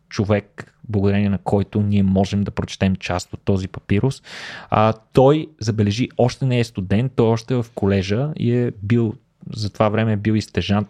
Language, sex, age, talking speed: Bulgarian, male, 20-39, 180 wpm